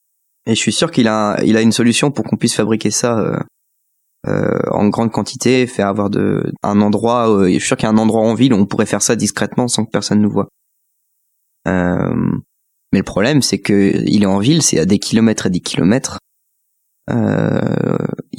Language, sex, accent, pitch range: French, male, French, 105-125 Hz